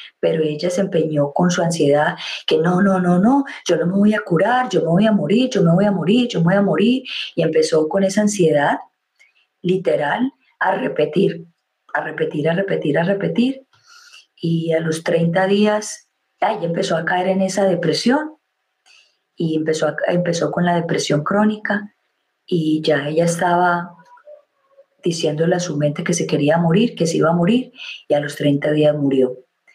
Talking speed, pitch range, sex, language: 180 wpm, 165-210 Hz, female, Spanish